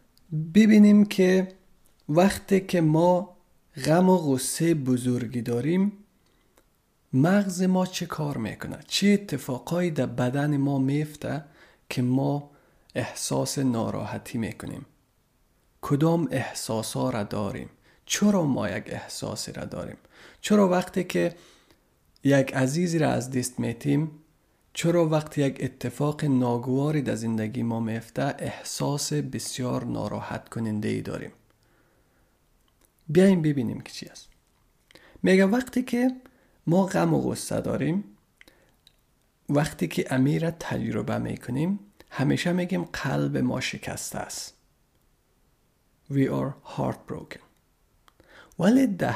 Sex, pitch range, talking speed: male, 125-180 Hz, 105 wpm